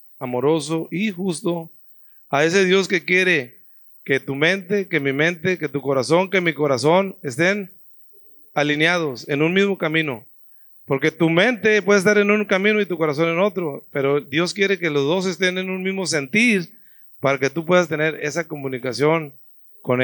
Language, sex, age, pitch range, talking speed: Spanish, male, 40-59, 145-190 Hz, 175 wpm